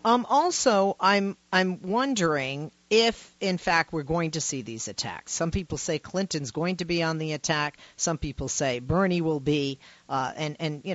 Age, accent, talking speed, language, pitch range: 40-59, American, 185 wpm, English, 145-190 Hz